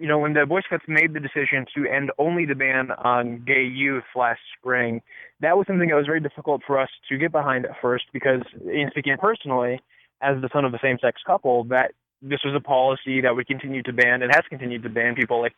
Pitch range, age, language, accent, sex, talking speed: 125-145 Hz, 20-39, English, American, male, 235 wpm